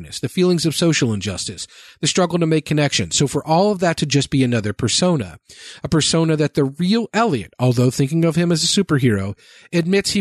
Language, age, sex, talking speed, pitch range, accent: English, 40-59, male, 205 wpm, 135-170 Hz, American